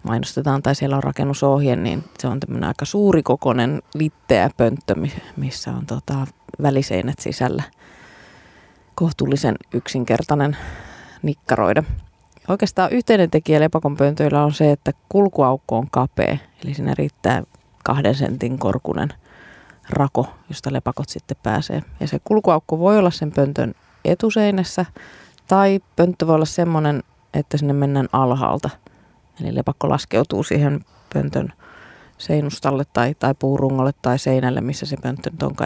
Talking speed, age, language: 125 wpm, 30-49, Finnish